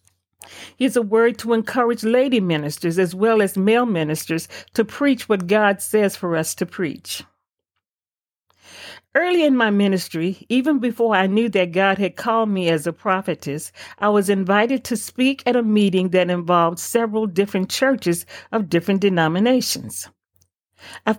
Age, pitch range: 50-69, 175-240 Hz